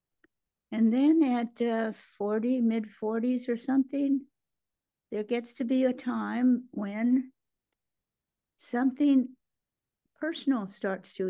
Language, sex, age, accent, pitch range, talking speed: English, female, 60-79, American, 195-245 Hz, 100 wpm